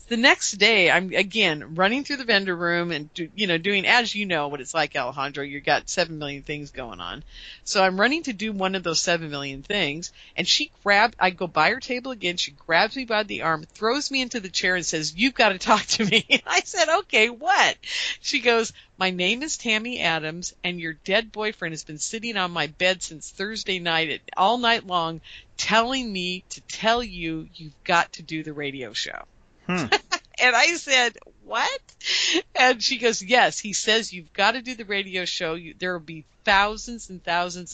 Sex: female